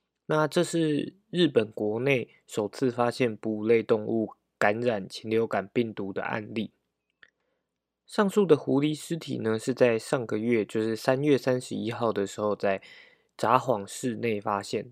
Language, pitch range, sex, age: Chinese, 110-135 Hz, male, 20-39